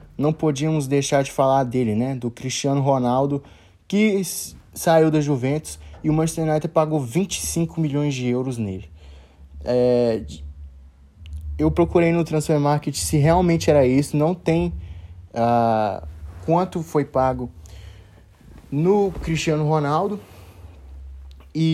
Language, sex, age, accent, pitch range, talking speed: Portuguese, male, 20-39, Brazilian, 120-170 Hz, 115 wpm